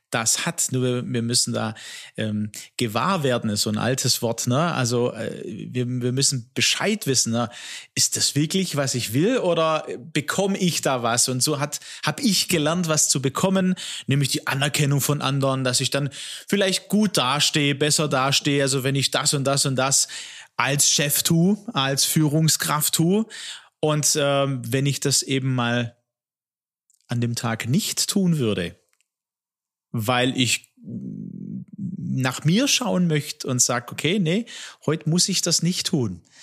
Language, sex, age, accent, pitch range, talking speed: German, male, 30-49, German, 130-170 Hz, 160 wpm